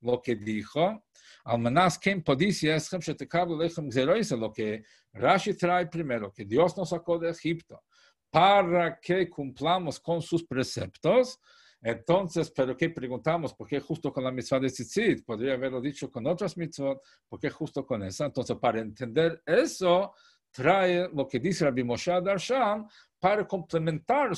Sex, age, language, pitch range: male, 50-69, English, 130-180 Hz